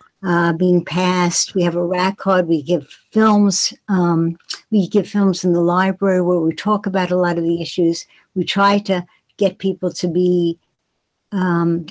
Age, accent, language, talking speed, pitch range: 60-79, American, English, 175 wpm, 175-205 Hz